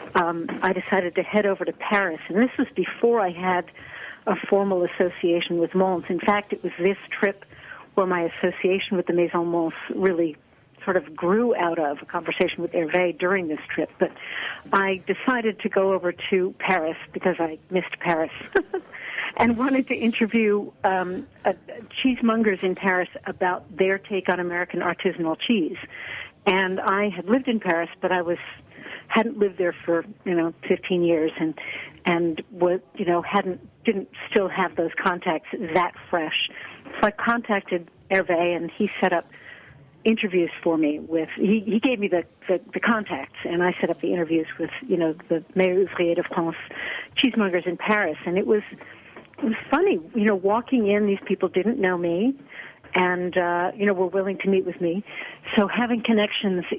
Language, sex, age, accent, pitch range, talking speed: English, female, 60-79, American, 175-205 Hz, 175 wpm